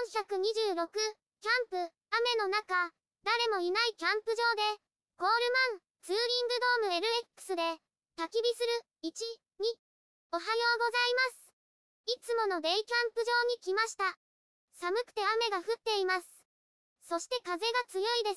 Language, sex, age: Japanese, male, 20-39